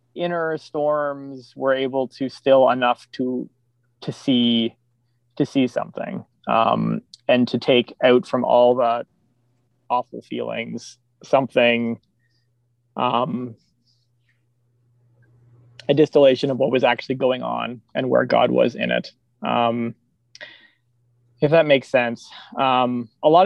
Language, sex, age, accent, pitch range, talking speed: English, male, 20-39, American, 120-140 Hz, 120 wpm